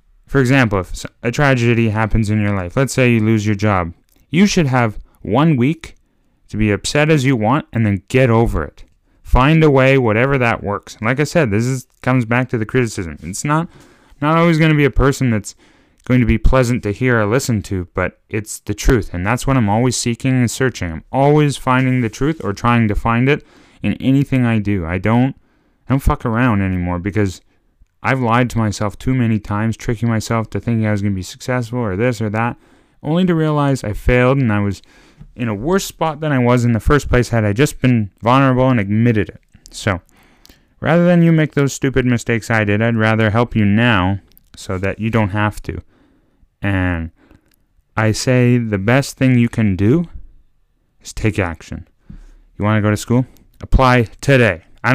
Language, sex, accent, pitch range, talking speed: English, male, American, 105-130 Hz, 210 wpm